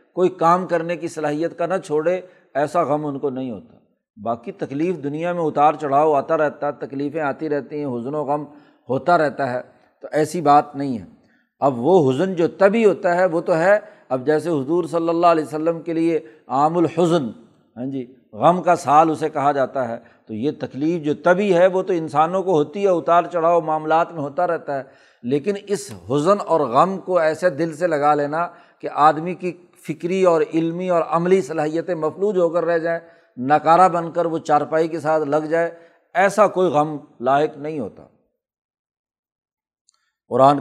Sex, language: male, Urdu